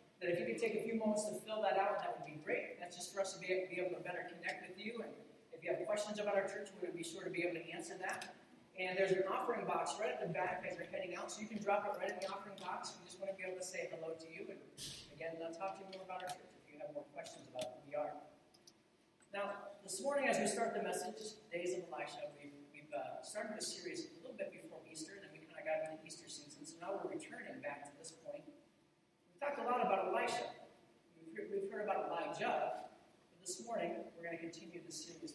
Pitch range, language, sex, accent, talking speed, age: 170-235 Hz, English, male, American, 265 wpm, 40-59